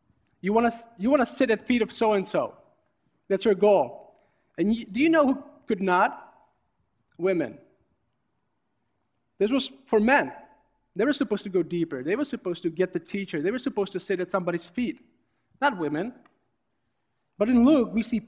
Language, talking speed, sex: English, 180 wpm, male